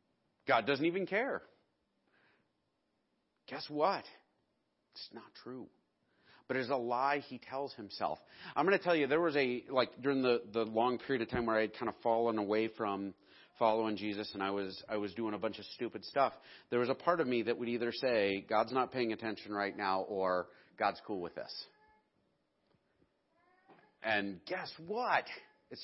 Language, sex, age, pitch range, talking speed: English, male, 40-59, 110-140 Hz, 180 wpm